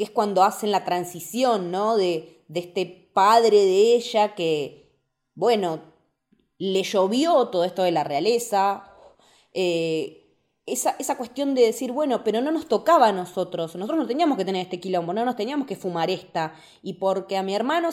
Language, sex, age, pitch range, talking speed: Spanish, female, 20-39, 185-255 Hz, 175 wpm